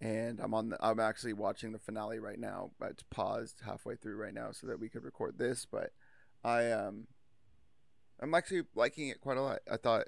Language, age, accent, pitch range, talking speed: English, 30-49, American, 110-120 Hz, 210 wpm